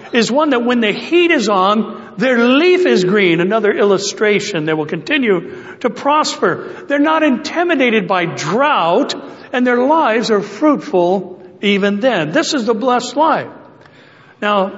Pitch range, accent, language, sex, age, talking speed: 185-255 Hz, American, English, male, 60-79, 150 wpm